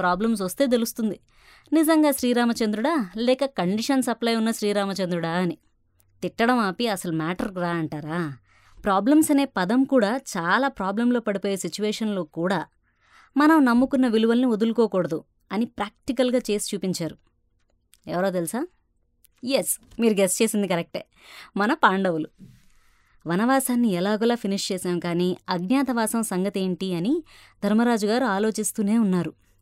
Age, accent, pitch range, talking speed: 20-39, native, 180-245 Hz, 110 wpm